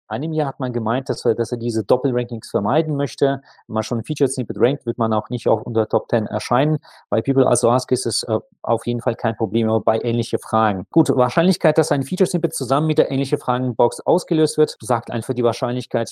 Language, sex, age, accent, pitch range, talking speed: German, male, 30-49, German, 115-140 Hz, 225 wpm